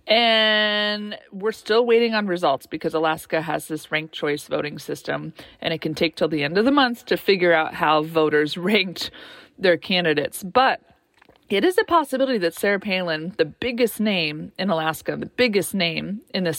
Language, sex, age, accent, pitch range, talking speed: English, female, 30-49, American, 170-225 Hz, 180 wpm